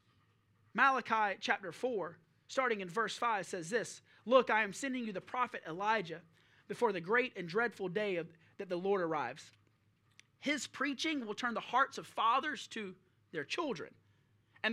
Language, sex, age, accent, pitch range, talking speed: English, male, 30-49, American, 215-300 Hz, 160 wpm